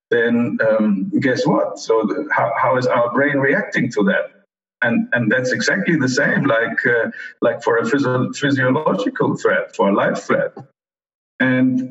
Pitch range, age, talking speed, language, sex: 125-175 Hz, 50-69, 165 wpm, English, male